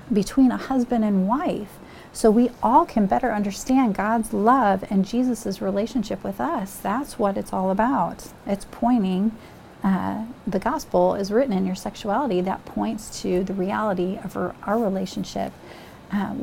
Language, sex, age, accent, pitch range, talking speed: English, female, 40-59, American, 195-245 Hz, 155 wpm